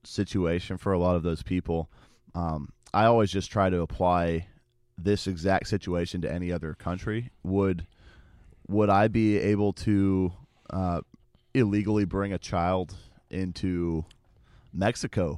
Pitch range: 85-105 Hz